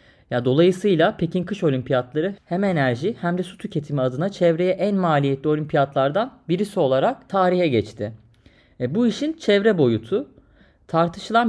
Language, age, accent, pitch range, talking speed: Turkish, 30-49, native, 150-195 Hz, 125 wpm